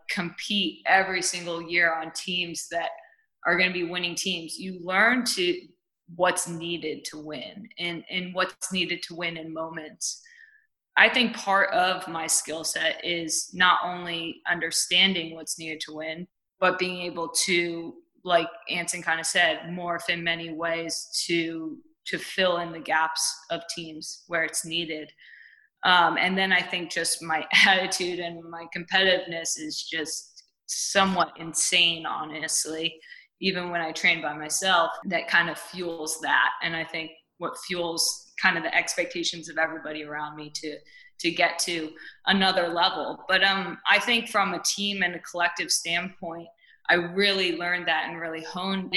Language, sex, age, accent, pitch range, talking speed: English, female, 20-39, American, 165-190 Hz, 160 wpm